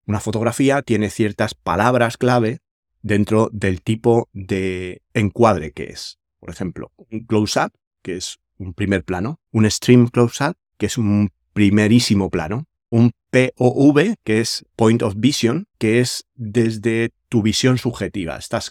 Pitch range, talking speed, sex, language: 90-115 Hz, 140 wpm, male, Spanish